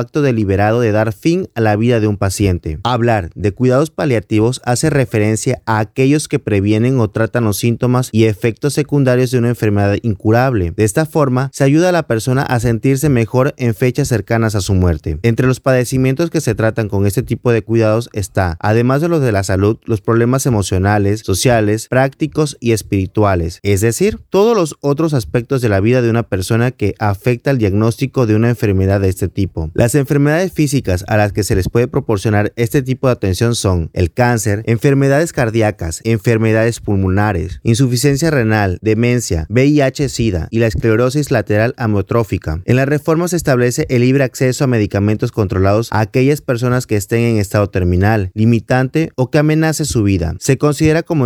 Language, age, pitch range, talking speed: Spanish, 30-49, 105-130 Hz, 180 wpm